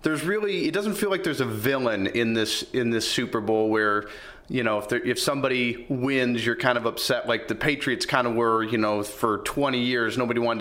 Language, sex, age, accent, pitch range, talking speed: English, male, 30-49, American, 120-150 Hz, 220 wpm